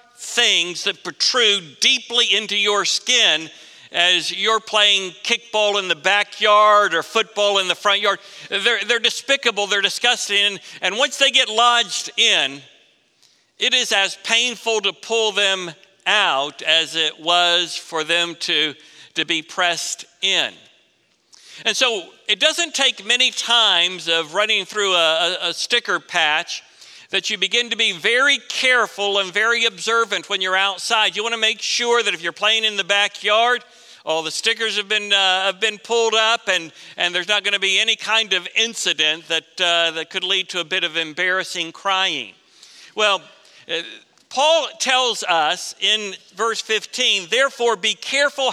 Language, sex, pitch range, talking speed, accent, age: English, male, 180-230 Hz, 160 wpm, American, 60-79